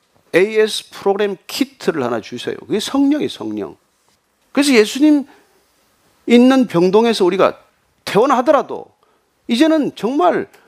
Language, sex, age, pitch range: Korean, male, 40-59, 195-285 Hz